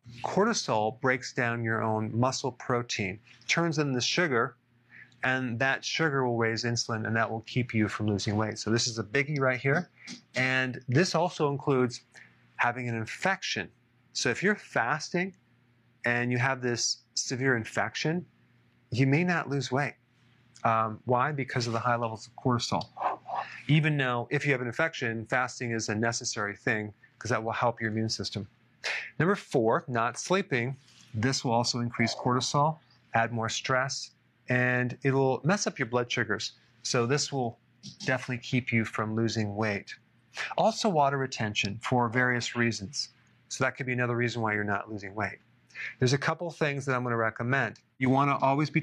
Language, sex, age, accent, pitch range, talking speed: English, male, 30-49, American, 115-135 Hz, 175 wpm